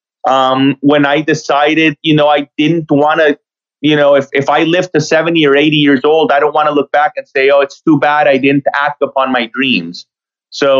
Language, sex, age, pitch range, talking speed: English, male, 30-49, 135-165 Hz, 230 wpm